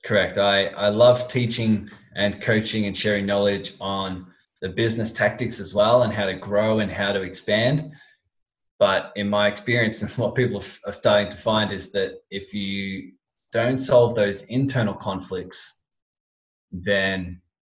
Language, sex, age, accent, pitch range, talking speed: English, male, 20-39, Australian, 100-115 Hz, 155 wpm